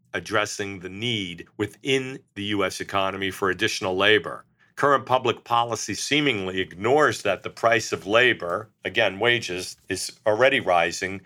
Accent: American